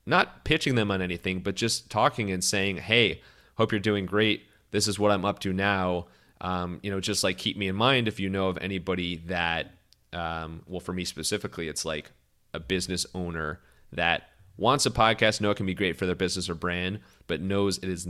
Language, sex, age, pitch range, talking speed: English, male, 30-49, 85-105 Hz, 215 wpm